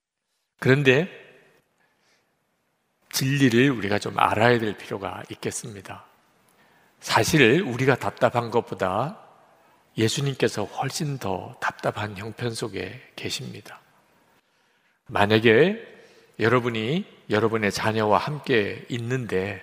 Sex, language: male, Korean